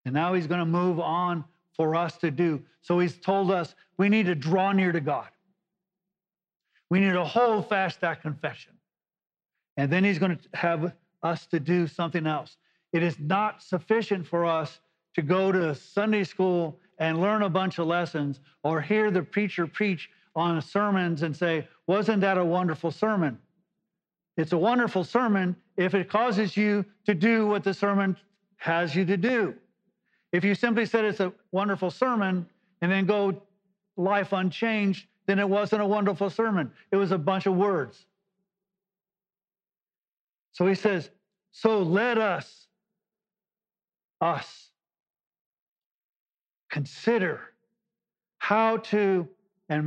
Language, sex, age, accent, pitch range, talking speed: English, male, 50-69, American, 170-200 Hz, 150 wpm